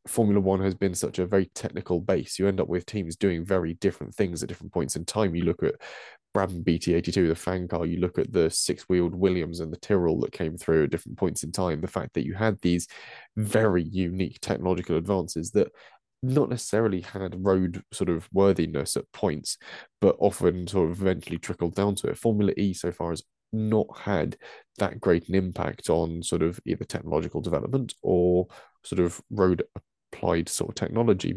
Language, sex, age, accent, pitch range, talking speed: English, male, 20-39, British, 85-100 Hz, 195 wpm